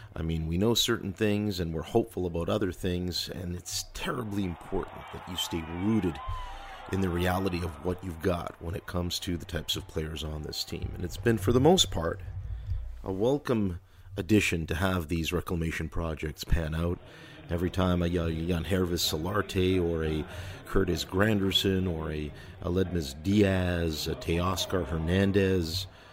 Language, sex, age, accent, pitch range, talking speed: English, male, 40-59, American, 85-100 Hz, 165 wpm